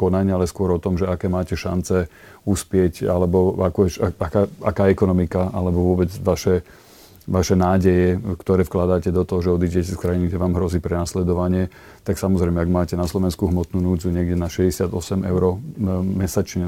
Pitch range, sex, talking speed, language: 90-95 Hz, male, 160 wpm, Slovak